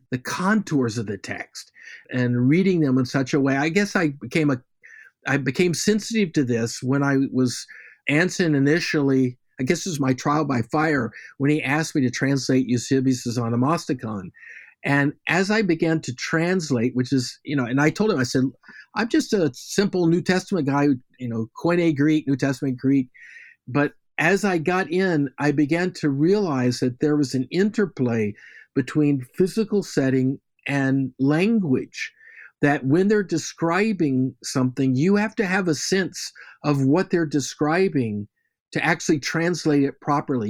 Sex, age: male, 50-69